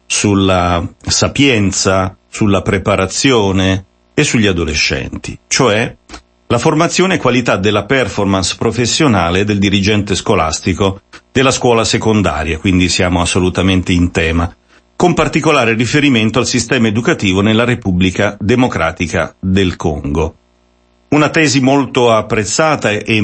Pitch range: 90-115 Hz